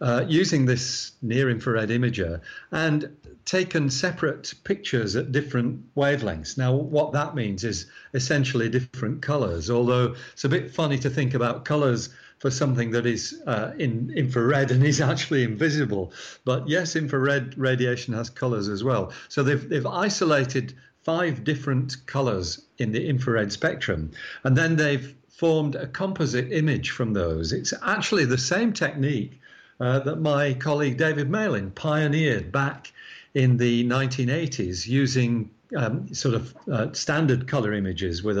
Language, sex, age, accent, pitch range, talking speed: English, male, 50-69, British, 120-145 Hz, 145 wpm